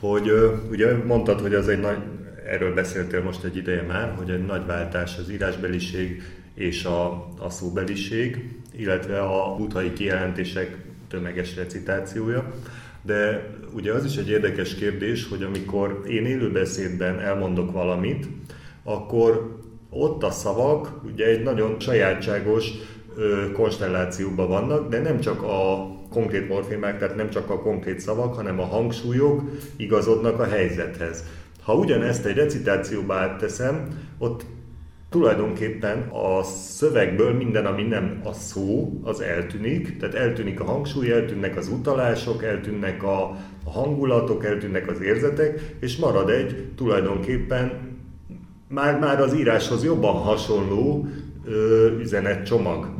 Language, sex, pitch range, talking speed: Hungarian, male, 95-120 Hz, 125 wpm